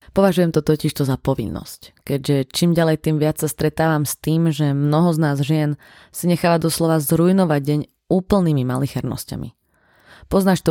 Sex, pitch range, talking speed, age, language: female, 140-165 Hz, 155 wpm, 20-39, Slovak